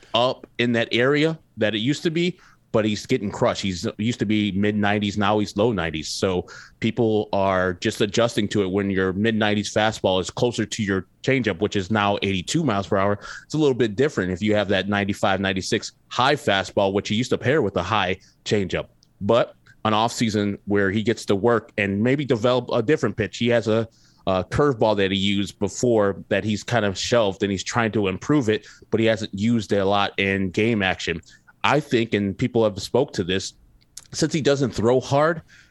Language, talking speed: English, 215 wpm